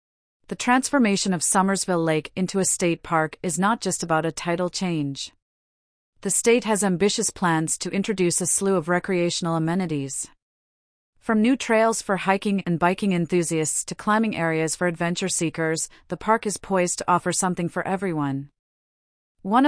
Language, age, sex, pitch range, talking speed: English, 40-59, female, 165-195 Hz, 160 wpm